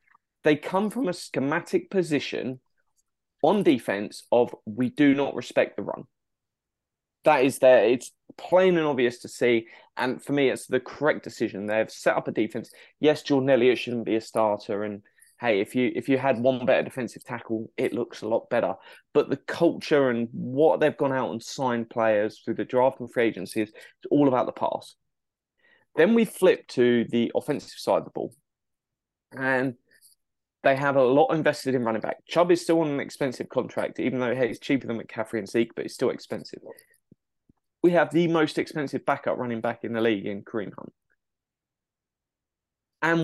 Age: 20-39